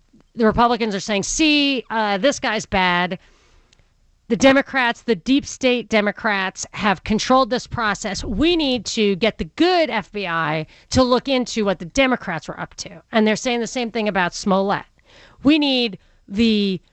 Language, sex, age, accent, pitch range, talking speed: English, female, 40-59, American, 185-255 Hz, 165 wpm